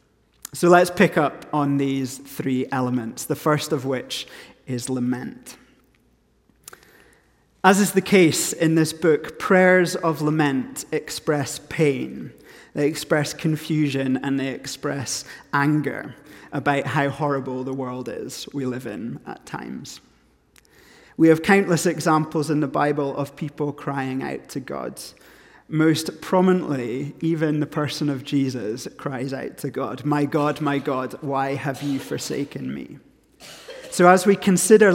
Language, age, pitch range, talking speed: English, 30-49, 140-160 Hz, 140 wpm